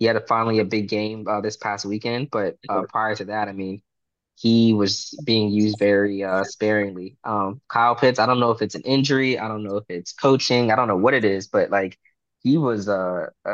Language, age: English, 20-39